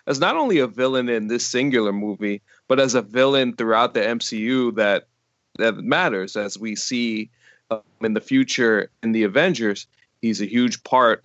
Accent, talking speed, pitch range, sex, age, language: American, 175 wpm, 110-135 Hz, male, 20-39, English